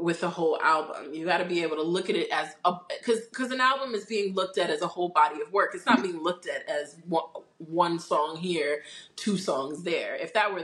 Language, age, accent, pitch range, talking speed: English, 20-39, American, 150-190 Hz, 250 wpm